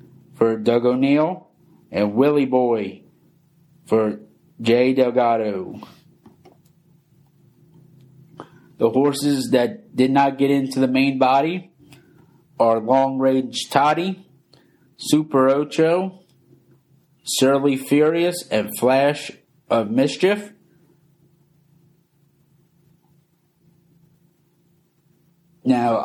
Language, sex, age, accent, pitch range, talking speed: English, male, 50-69, American, 130-160 Hz, 75 wpm